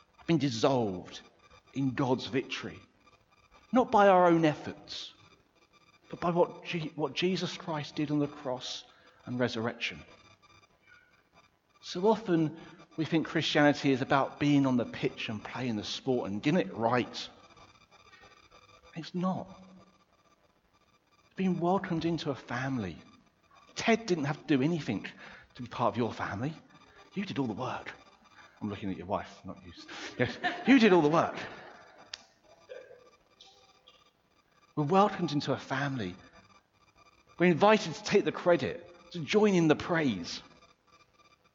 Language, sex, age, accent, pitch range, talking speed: English, male, 40-59, British, 145-200 Hz, 135 wpm